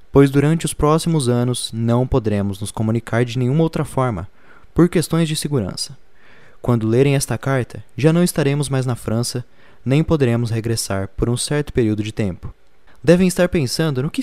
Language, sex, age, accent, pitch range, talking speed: Portuguese, male, 20-39, Brazilian, 110-145 Hz, 175 wpm